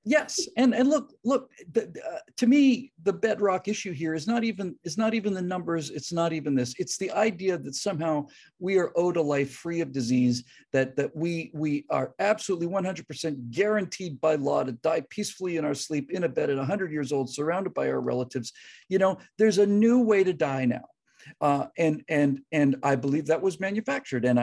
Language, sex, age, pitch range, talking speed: English, male, 50-69, 140-225 Hz, 210 wpm